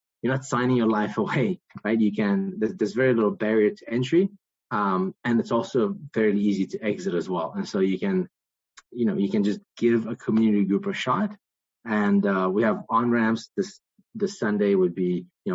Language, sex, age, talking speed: English, male, 20-39, 205 wpm